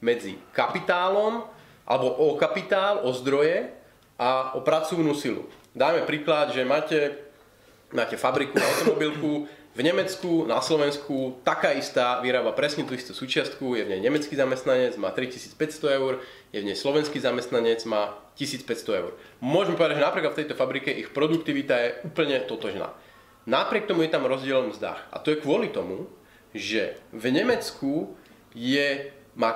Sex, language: male, Slovak